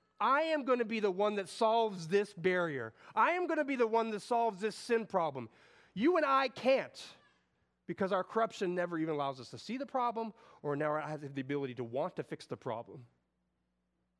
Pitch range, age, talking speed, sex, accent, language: 130-210 Hz, 30-49, 205 wpm, male, American, English